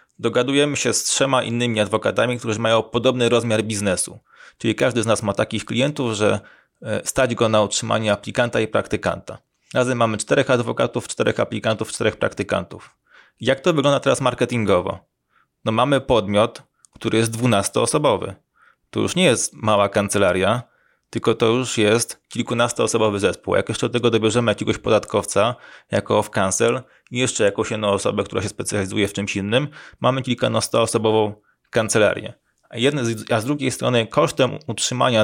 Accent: native